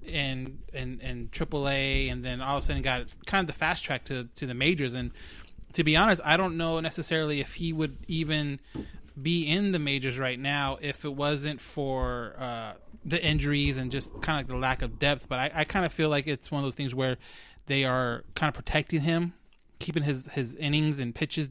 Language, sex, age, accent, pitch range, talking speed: English, male, 20-39, American, 130-155 Hz, 220 wpm